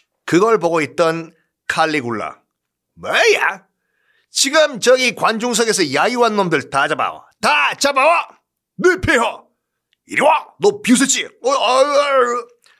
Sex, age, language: male, 40-59, Korean